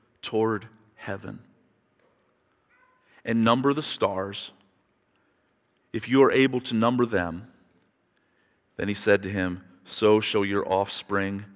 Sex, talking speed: male, 115 wpm